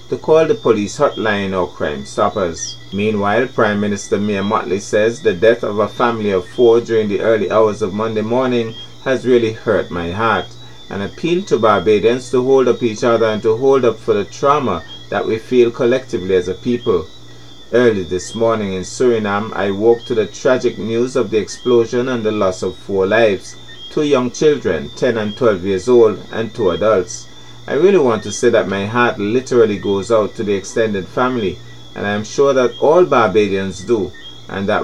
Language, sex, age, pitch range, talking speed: English, male, 30-49, 95-125 Hz, 195 wpm